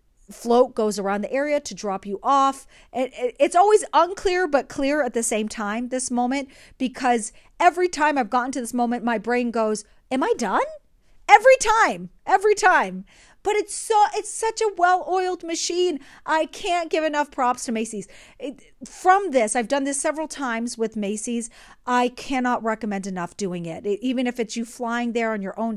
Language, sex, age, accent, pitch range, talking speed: English, female, 40-59, American, 220-295 Hz, 180 wpm